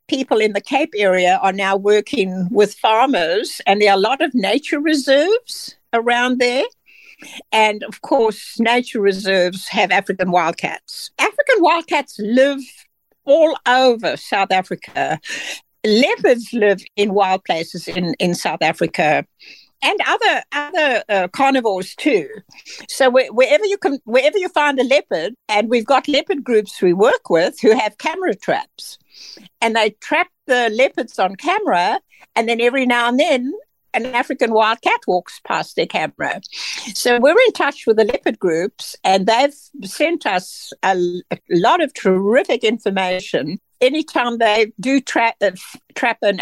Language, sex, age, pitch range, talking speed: English, female, 60-79, 200-280 Hz, 145 wpm